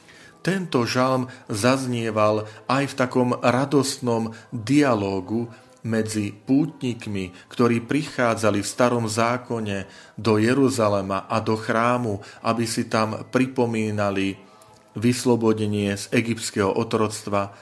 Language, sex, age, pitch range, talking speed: Slovak, male, 40-59, 105-120 Hz, 95 wpm